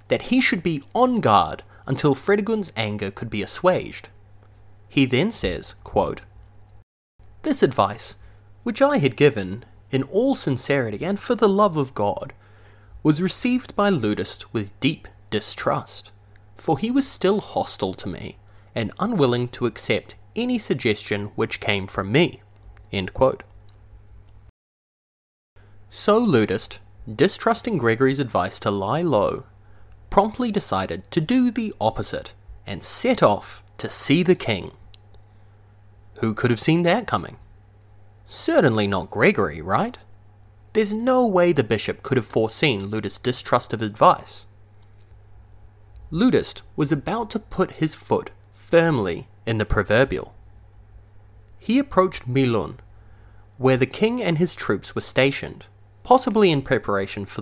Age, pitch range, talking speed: 30-49, 100-155 Hz, 130 wpm